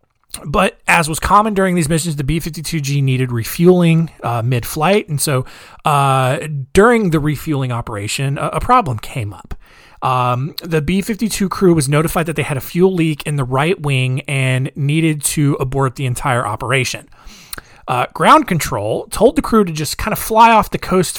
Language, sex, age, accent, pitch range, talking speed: English, male, 30-49, American, 130-165 Hz, 175 wpm